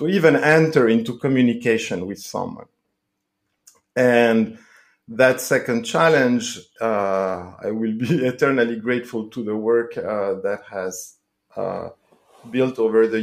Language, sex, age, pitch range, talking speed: English, male, 50-69, 105-135 Hz, 120 wpm